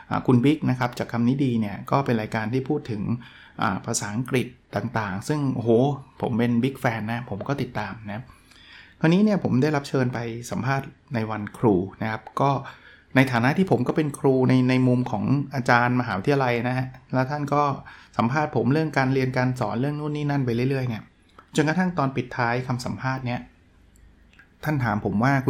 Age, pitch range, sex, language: 20-39, 115-135 Hz, male, Thai